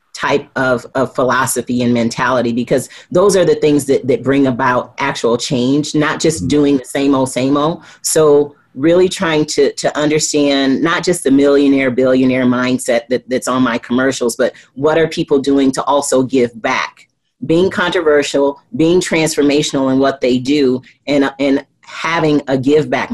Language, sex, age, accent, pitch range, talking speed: English, female, 30-49, American, 130-155 Hz, 170 wpm